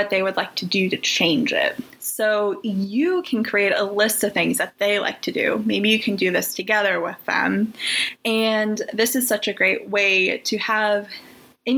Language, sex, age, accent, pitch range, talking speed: English, female, 20-39, American, 195-235 Hz, 200 wpm